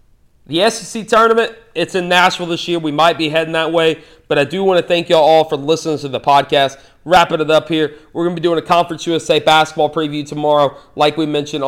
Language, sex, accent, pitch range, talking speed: English, male, American, 145-170 Hz, 230 wpm